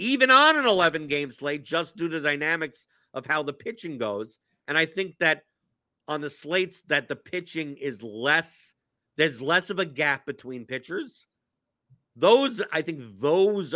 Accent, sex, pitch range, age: American, male, 140-180 Hz, 50-69